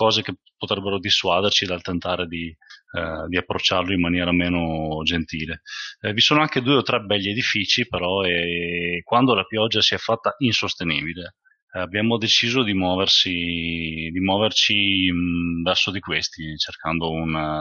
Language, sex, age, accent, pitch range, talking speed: Italian, male, 30-49, native, 90-110 Hz, 150 wpm